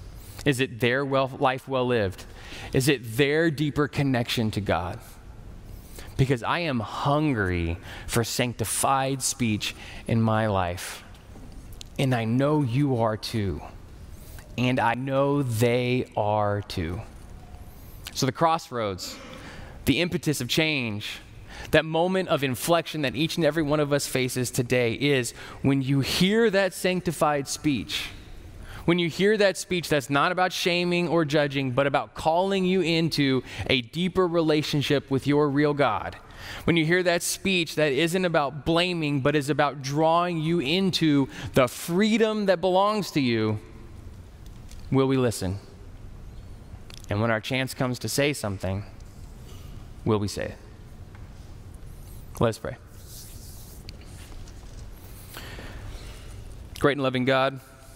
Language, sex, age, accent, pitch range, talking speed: English, male, 20-39, American, 105-150 Hz, 135 wpm